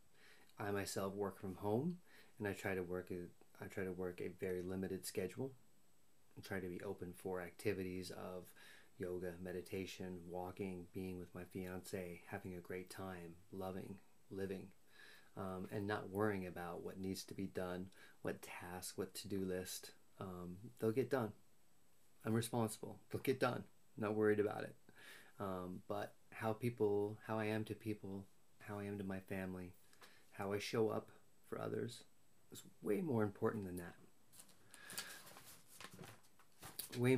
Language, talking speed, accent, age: English, 155 wpm, American, 30-49